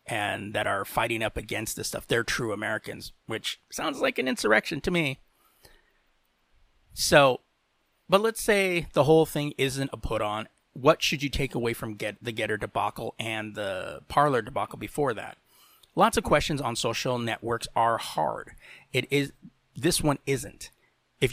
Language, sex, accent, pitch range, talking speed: English, male, American, 115-150 Hz, 165 wpm